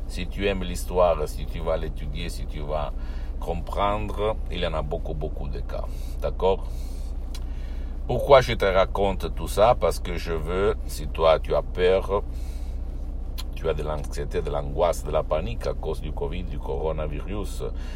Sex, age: male, 60-79